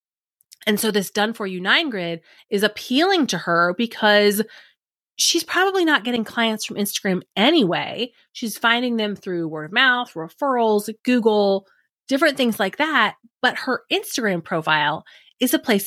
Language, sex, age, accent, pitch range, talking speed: English, female, 30-49, American, 180-245 Hz, 155 wpm